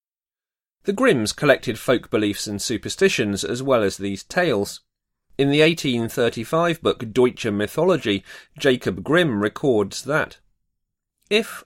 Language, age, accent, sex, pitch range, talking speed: English, 40-59, British, male, 105-155 Hz, 120 wpm